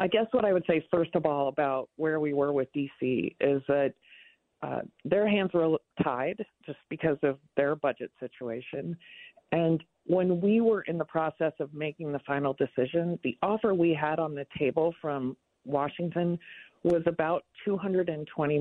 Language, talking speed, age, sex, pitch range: English, 170 wpm, 50-69, female, 145-180 Hz